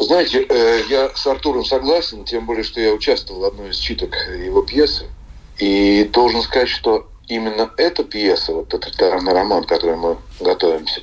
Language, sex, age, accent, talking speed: Russian, male, 40-59, native, 165 wpm